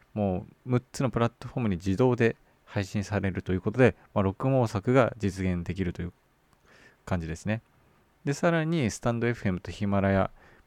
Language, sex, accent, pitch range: Japanese, male, native, 95-120 Hz